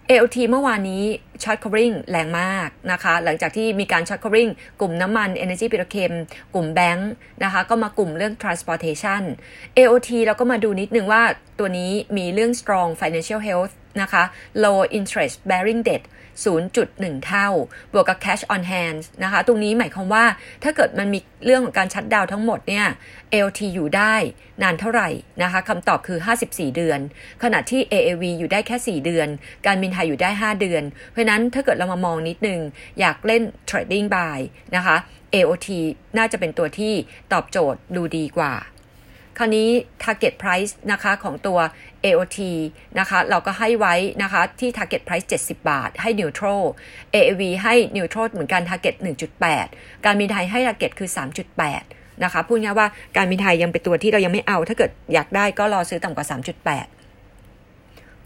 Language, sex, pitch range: Thai, female, 175-225 Hz